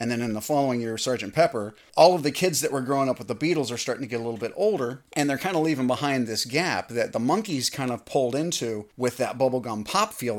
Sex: male